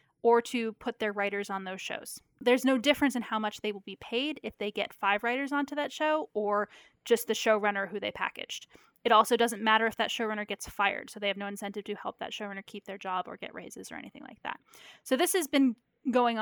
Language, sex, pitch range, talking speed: English, female, 205-250 Hz, 240 wpm